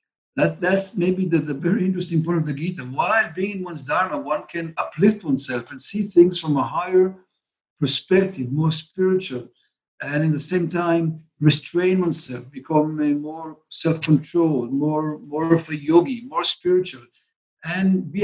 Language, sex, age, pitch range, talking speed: English, male, 50-69, 145-180 Hz, 160 wpm